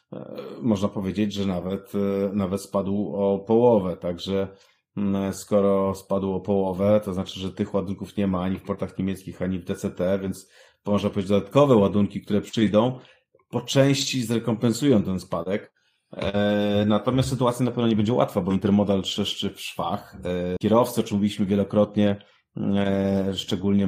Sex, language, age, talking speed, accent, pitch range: male, Polish, 30-49, 145 wpm, native, 95-110 Hz